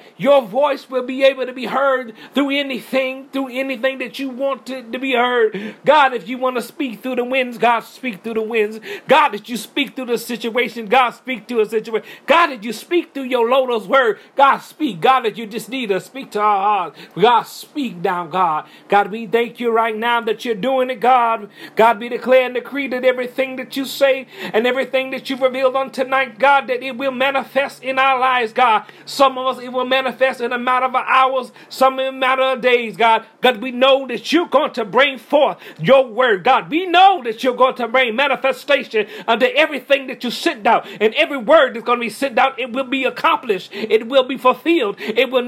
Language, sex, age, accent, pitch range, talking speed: English, male, 40-59, American, 235-265 Hz, 225 wpm